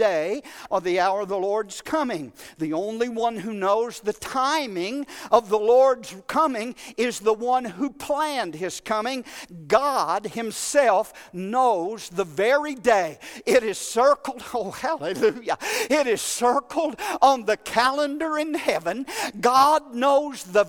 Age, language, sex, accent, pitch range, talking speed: 50-69, English, male, American, 230-335 Hz, 140 wpm